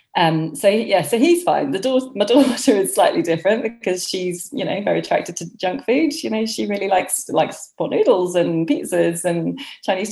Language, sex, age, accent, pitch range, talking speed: English, female, 30-49, British, 155-195 Hz, 200 wpm